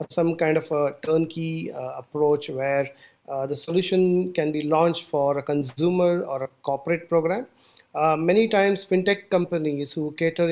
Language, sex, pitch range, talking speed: English, male, 145-170 Hz, 160 wpm